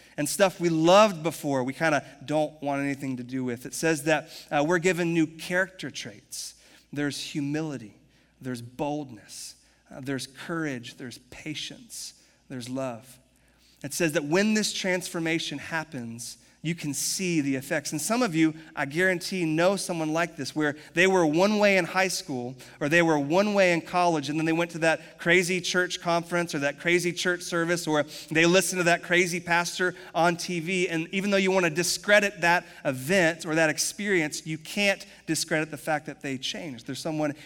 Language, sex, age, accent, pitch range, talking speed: English, male, 30-49, American, 145-185 Hz, 185 wpm